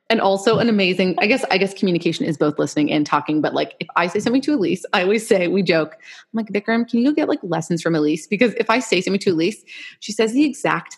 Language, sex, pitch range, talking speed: English, female, 160-210 Hz, 270 wpm